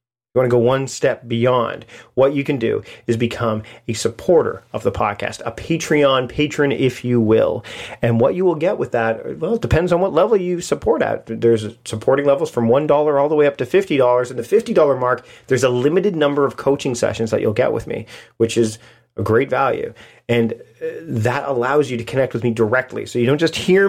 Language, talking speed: English, 215 wpm